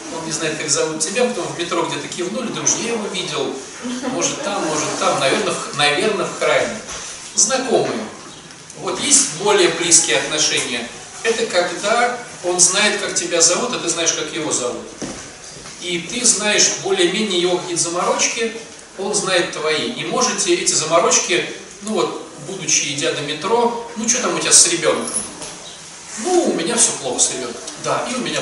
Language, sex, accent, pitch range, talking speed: Russian, male, native, 155-230 Hz, 165 wpm